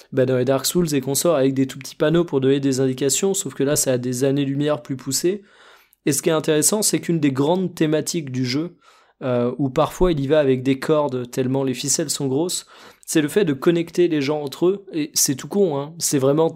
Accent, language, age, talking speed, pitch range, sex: French, French, 20-39, 245 wpm, 140-170 Hz, male